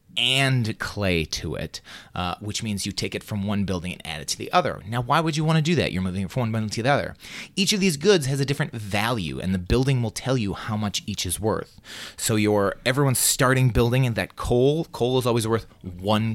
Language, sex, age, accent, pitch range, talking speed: English, male, 30-49, American, 100-130 Hz, 250 wpm